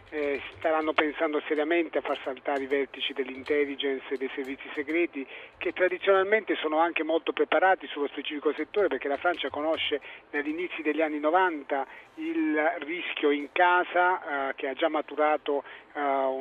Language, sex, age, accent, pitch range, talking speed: Italian, male, 40-59, native, 145-185 Hz, 155 wpm